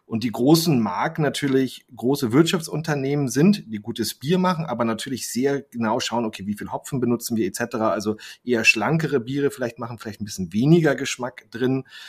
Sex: male